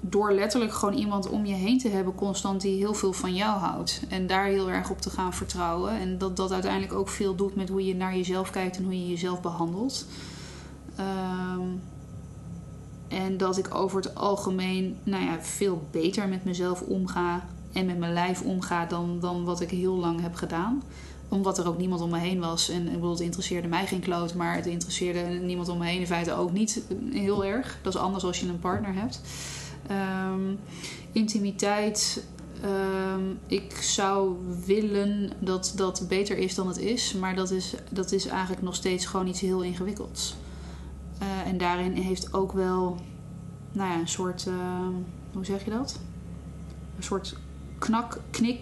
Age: 20-39